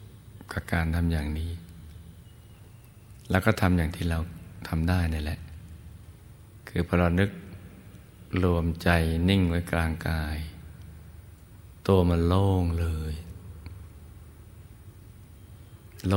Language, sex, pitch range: Thai, male, 85-105 Hz